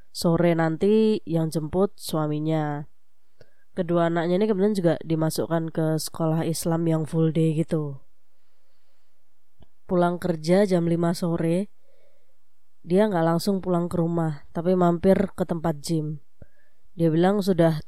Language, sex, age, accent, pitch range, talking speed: Indonesian, female, 20-39, native, 160-180 Hz, 125 wpm